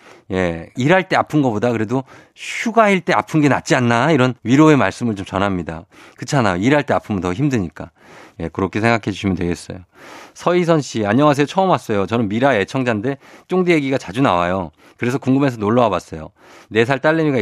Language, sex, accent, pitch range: Korean, male, native, 95-135 Hz